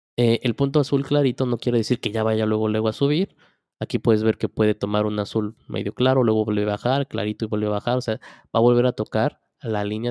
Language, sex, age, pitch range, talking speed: Spanish, male, 20-39, 110-135 Hz, 255 wpm